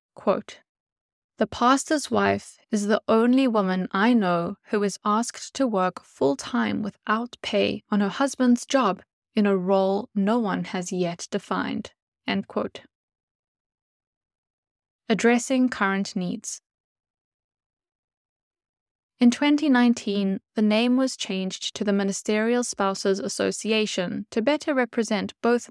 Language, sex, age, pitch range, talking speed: English, female, 10-29, 185-235 Hz, 120 wpm